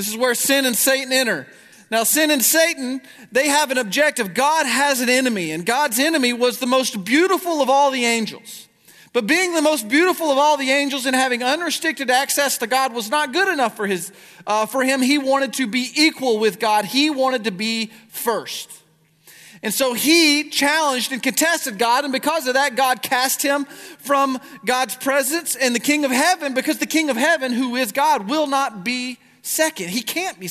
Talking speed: 200 wpm